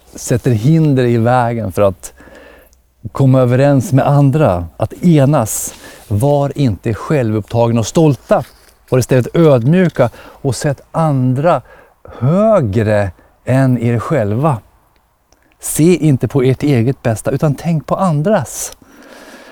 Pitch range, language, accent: 100-150 Hz, Swedish, native